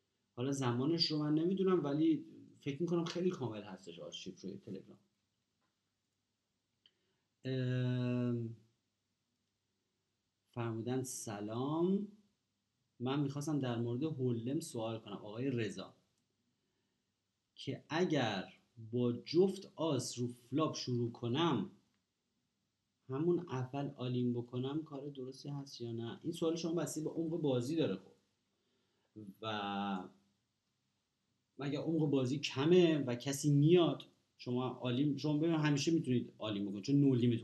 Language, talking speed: Persian, 115 wpm